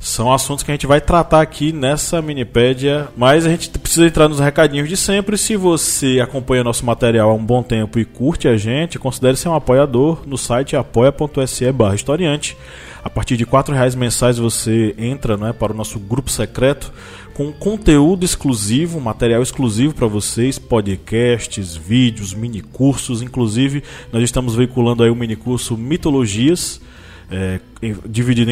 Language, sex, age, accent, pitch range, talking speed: Portuguese, male, 20-39, Brazilian, 110-135 Hz, 155 wpm